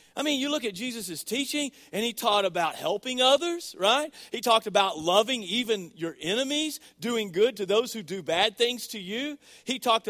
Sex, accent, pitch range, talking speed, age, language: male, American, 185-255 Hz, 195 wpm, 40-59, English